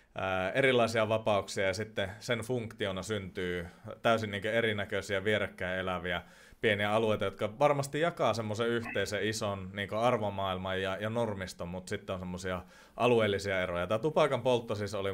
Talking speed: 130 wpm